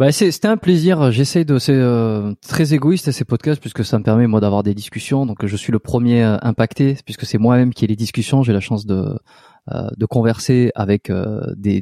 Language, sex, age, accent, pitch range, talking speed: French, male, 20-39, French, 115-150 Hz, 225 wpm